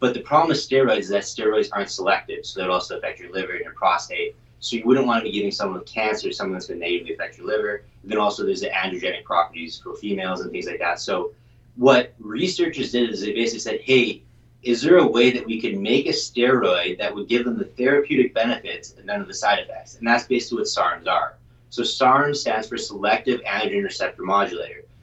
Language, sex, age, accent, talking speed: English, male, 30-49, American, 230 wpm